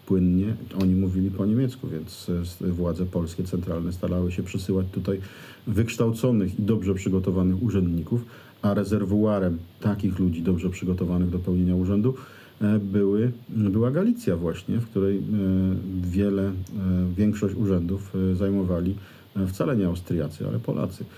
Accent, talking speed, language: native, 120 wpm, Polish